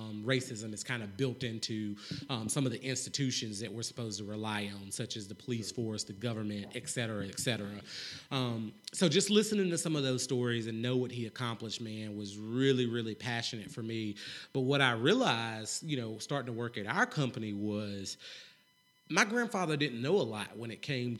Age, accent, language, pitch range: 30-49, American, English, 110-135 Hz